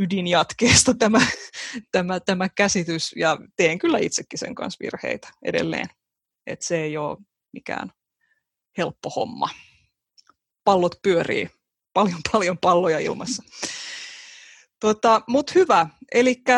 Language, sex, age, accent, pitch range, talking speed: Finnish, female, 20-39, native, 170-235 Hz, 110 wpm